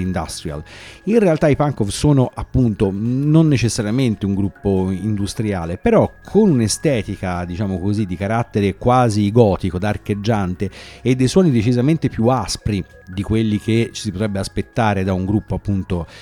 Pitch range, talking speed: 95-125 Hz, 145 wpm